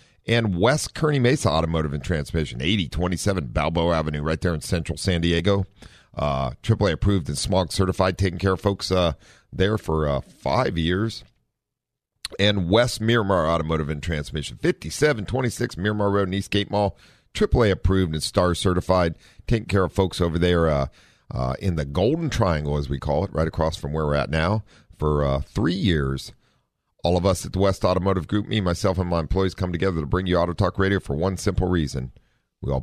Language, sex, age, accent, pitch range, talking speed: English, male, 50-69, American, 75-100 Hz, 190 wpm